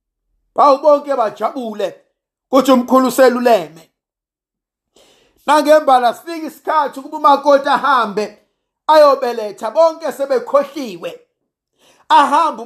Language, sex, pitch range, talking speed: English, male, 210-310 Hz, 75 wpm